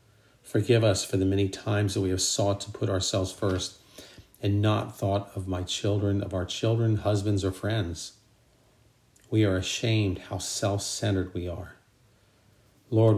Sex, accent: male, American